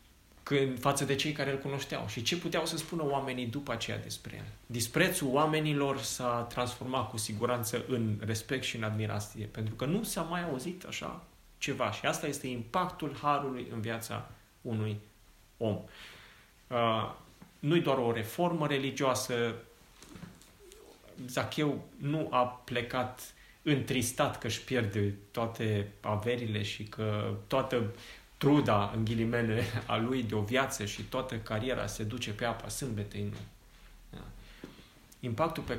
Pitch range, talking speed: 105-130 Hz, 135 wpm